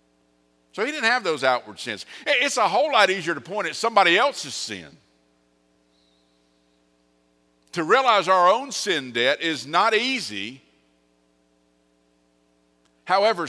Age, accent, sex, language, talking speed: 50-69, American, male, English, 125 wpm